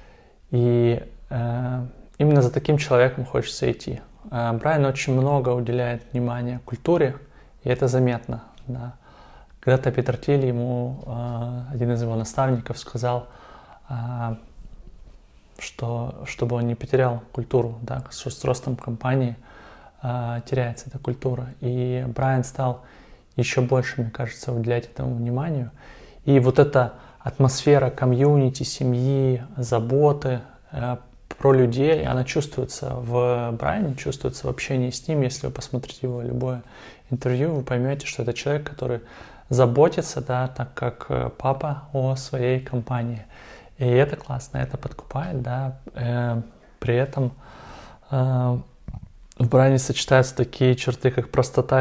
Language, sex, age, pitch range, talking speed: Russian, male, 20-39, 120-135 Hz, 125 wpm